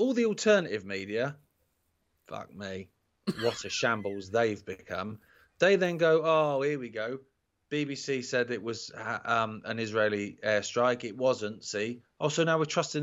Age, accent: 30-49, British